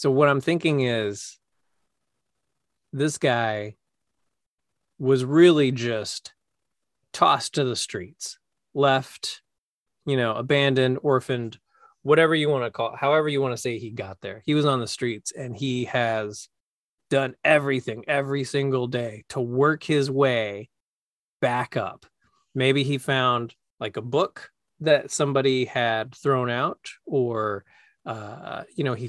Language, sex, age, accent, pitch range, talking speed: English, male, 20-39, American, 115-140 Hz, 140 wpm